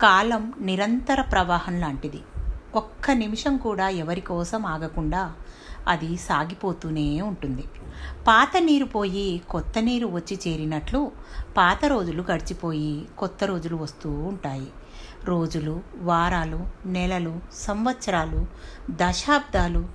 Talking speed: 95 wpm